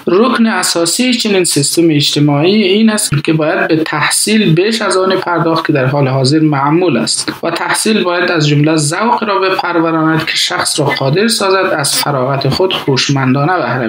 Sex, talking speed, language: male, 170 wpm, Persian